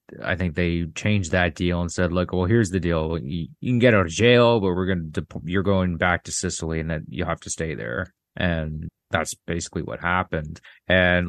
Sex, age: male, 30-49